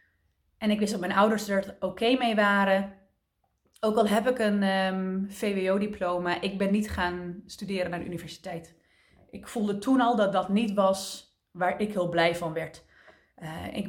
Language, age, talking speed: Dutch, 20-39, 175 wpm